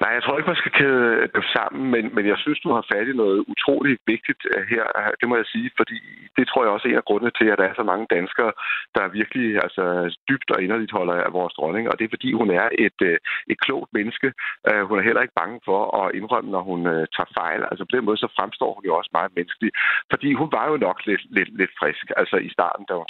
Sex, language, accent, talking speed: male, Danish, native, 255 wpm